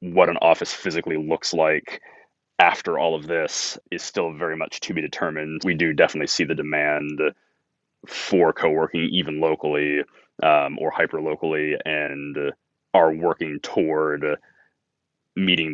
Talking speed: 135 wpm